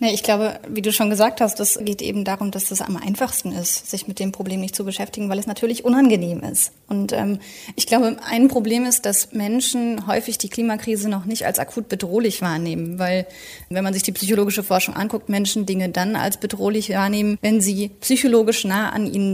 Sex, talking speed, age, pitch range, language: female, 210 wpm, 30-49, 190-225 Hz, German